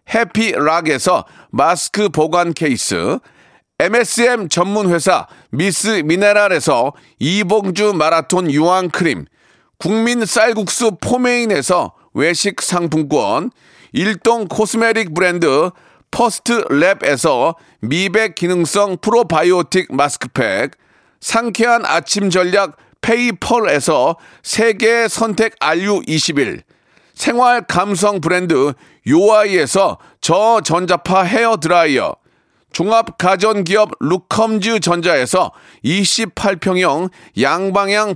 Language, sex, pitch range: Korean, male, 175-225 Hz